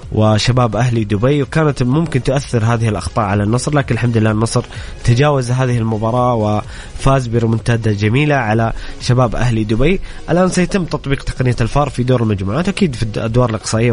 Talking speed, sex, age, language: 155 wpm, male, 20-39, English